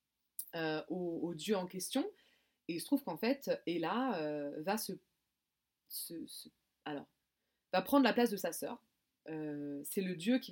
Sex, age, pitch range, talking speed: female, 20-39, 175-250 Hz, 175 wpm